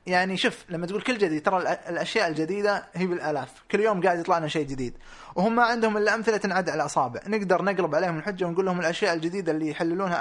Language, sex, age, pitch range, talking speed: Arabic, male, 20-39, 160-205 Hz, 205 wpm